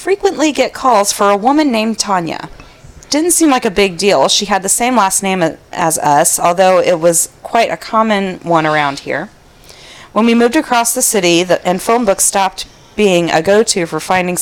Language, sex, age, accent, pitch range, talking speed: English, female, 40-59, American, 170-220 Hz, 190 wpm